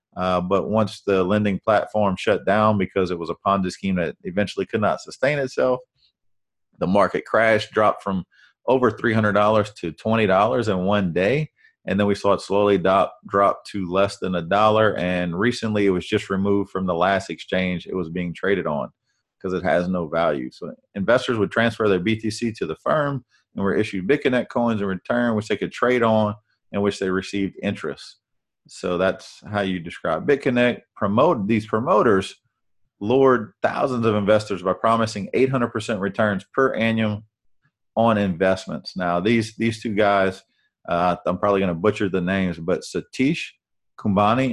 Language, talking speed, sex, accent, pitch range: English, 170 wpm, male, American, 95-110 Hz